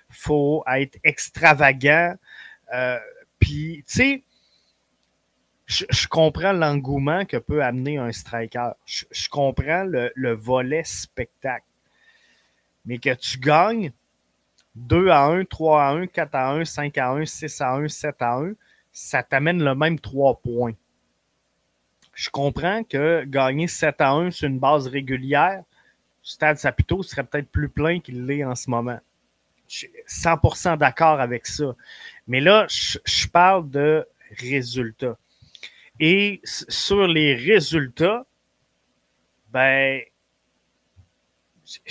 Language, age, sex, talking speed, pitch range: French, 30-49, male, 125 wpm, 120-160 Hz